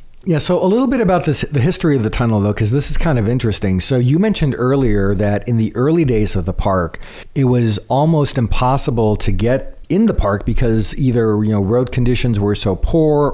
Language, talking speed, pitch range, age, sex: English, 220 wpm, 100-125 Hz, 40-59, male